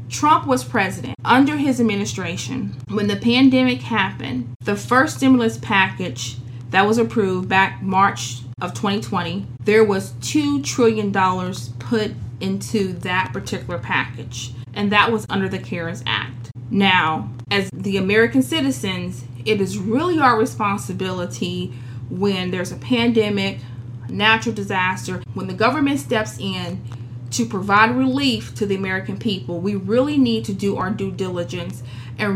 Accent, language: American, English